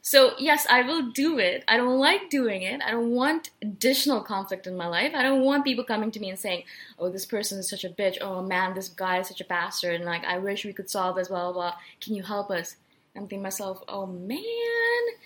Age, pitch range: 20-39, 200-280 Hz